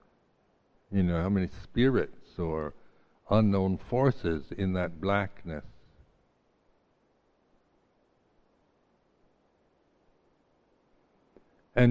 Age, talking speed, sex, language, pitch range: 60-79, 60 wpm, male, English, 85-105 Hz